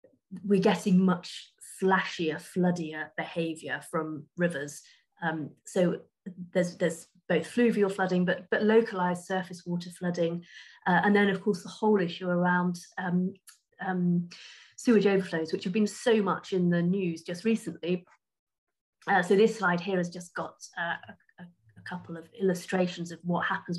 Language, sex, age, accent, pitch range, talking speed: English, female, 30-49, British, 170-190 Hz, 150 wpm